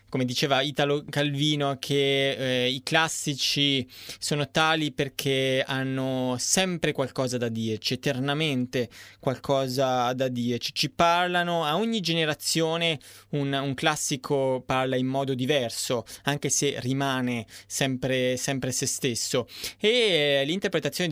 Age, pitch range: 20-39, 130-155 Hz